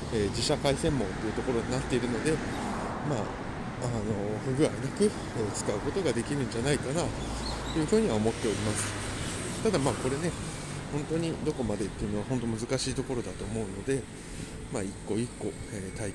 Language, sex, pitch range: Japanese, male, 100-130 Hz